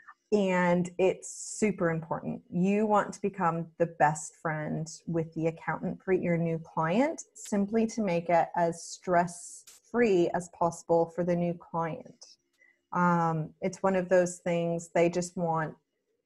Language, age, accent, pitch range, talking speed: English, 30-49, American, 165-210 Hz, 145 wpm